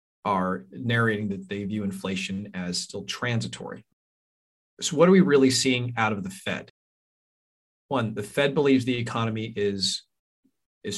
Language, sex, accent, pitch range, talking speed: English, male, American, 100-130 Hz, 150 wpm